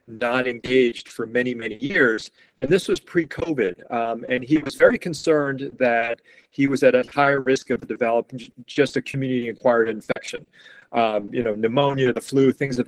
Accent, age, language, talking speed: American, 40-59, English, 170 wpm